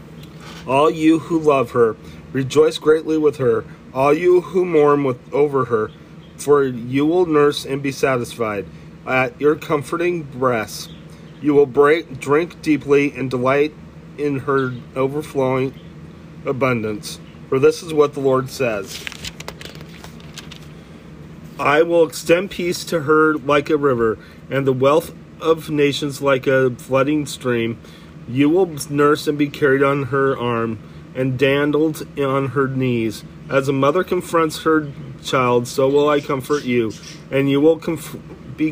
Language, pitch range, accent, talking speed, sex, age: English, 130-155 Hz, American, 140 wpm, male, 40-59